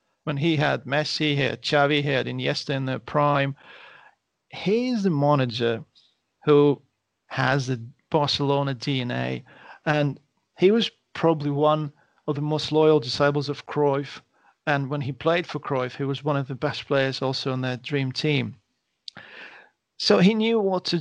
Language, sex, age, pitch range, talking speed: English, male, 40-59, 135-160 Hz, 160 wpm